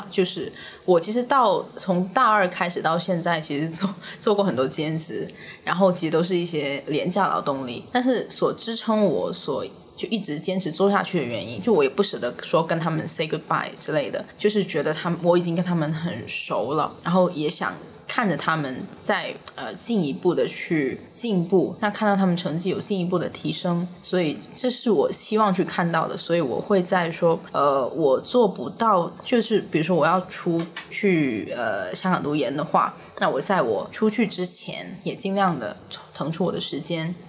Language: Chinese